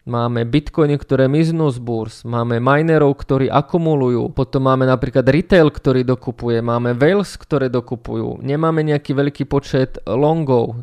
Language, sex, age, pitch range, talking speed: Slovak, male, 20-39, 125-145 Hz, 140 wpm